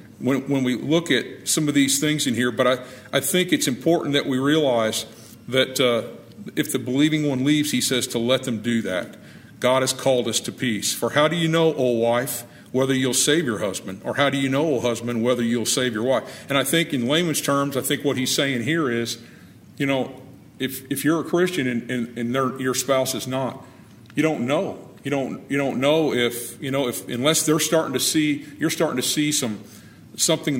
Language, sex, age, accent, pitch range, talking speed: English, male, 50-69, American, 120-150 Hz, 230 wpm